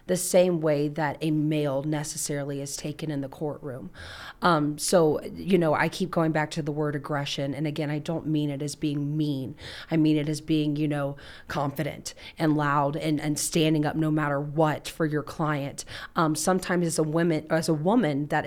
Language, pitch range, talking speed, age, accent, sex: English, 150-170 Hz, 195 wpm, 30-49, American, female